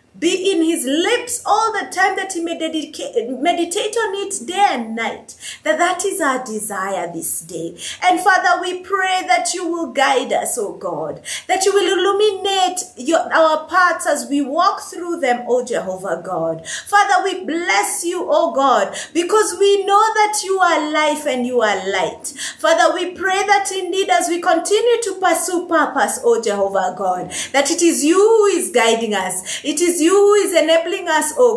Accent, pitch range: South African, 245-360 Hz